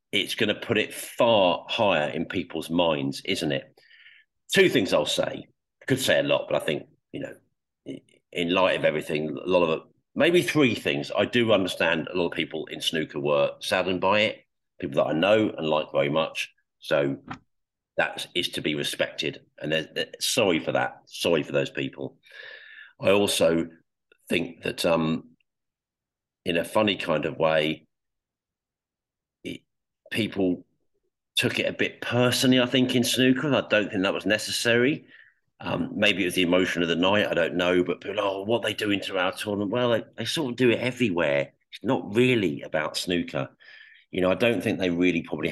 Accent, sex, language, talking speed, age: British, male, English, 185 wpm, 50-69